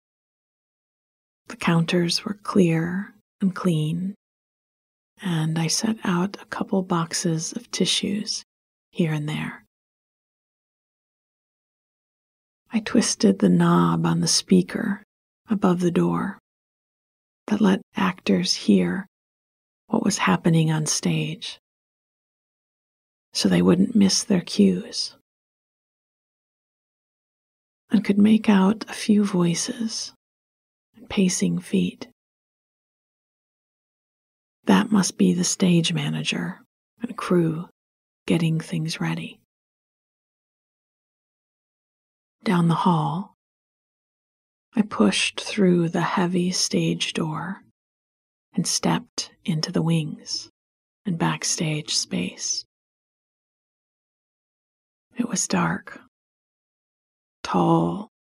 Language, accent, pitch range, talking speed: English, American, 165-210 Hz, 85 wpm